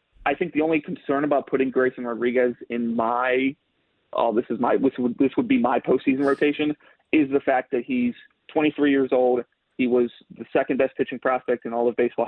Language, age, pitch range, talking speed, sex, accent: English, 30-49, 120-140 Hz, 205 wpm, male, American